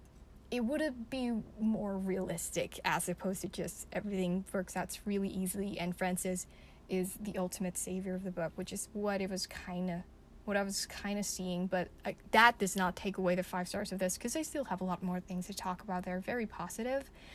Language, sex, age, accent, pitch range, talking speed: English, female, 10-29, American, 185-225 Hz, 215 wpm